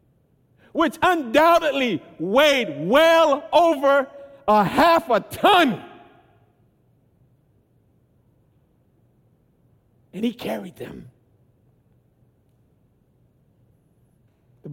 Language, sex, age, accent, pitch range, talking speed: English, male, 60-79, American, 130-195 Hz, 55 wpm